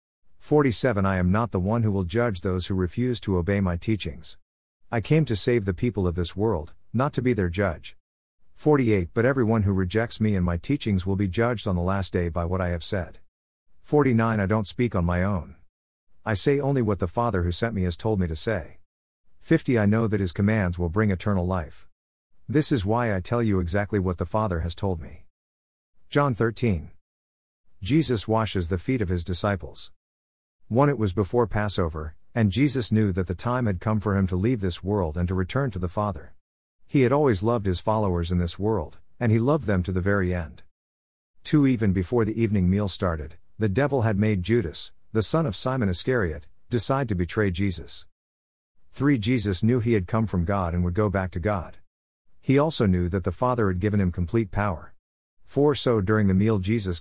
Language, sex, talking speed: English, male, 210 wpm